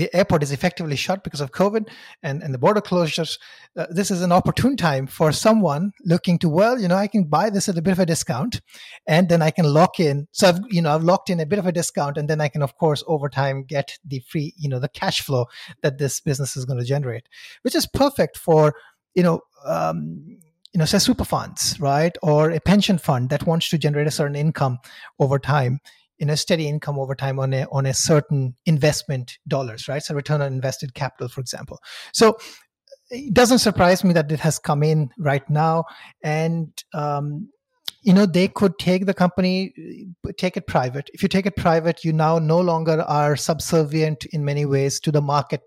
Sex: male